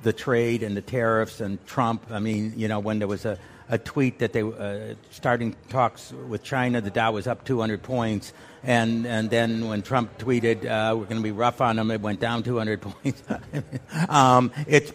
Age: 60-79